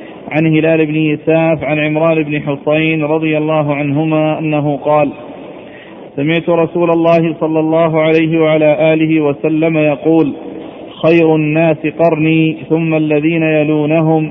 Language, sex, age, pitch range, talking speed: Arabic, male, 40-59, 155-165 Hz, 120 wpm